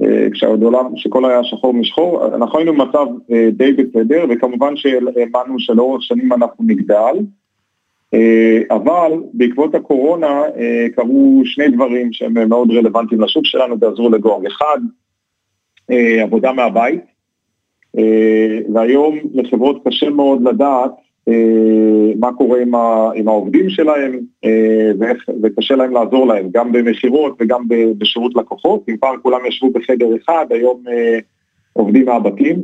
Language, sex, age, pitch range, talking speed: Hebrew, male, 40-59, 115-135 Hz, 120 wpm